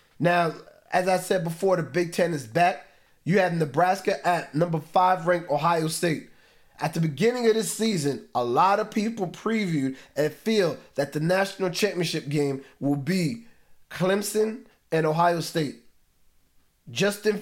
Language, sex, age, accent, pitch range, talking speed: English, male, 30-49, American, 150-200 Hz, 150 wpm